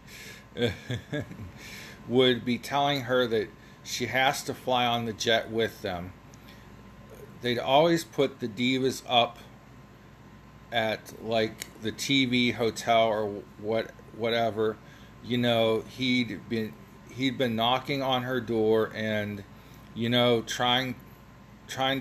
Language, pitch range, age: English, 110-125 Hz, 40-59